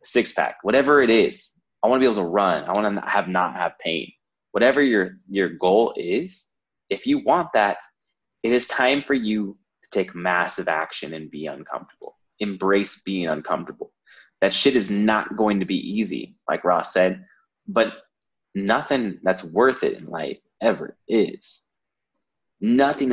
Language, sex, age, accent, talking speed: English, male, 20-39, American, 165 wpm